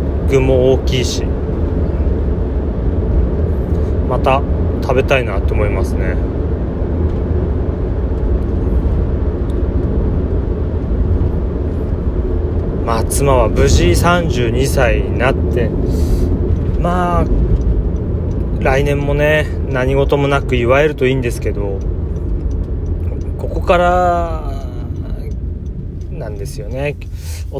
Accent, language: native, Japanese